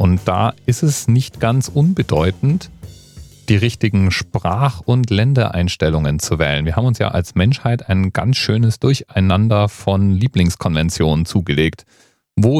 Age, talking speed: 40-59, 135 wpm